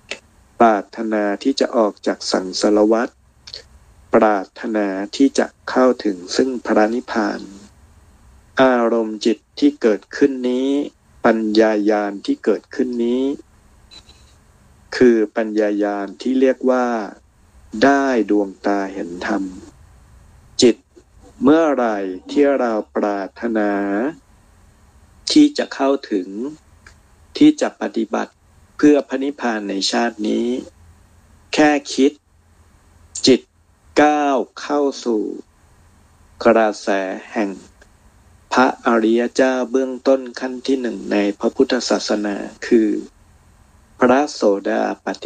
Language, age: Thai, 60-79